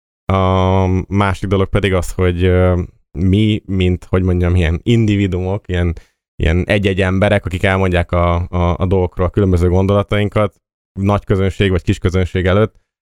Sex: male